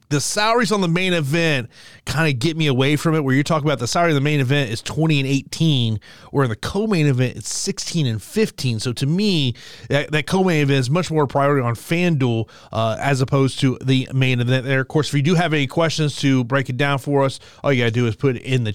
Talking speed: 255 wpm